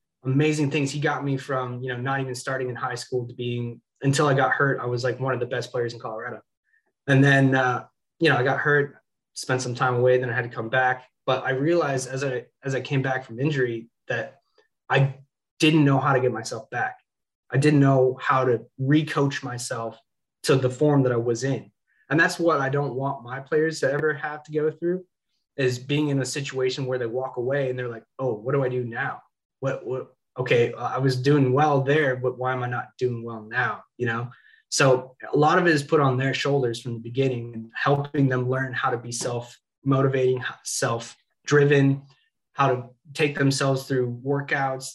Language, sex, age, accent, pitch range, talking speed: English, male, 20-39, American, 125-140 Hz, 215 wpm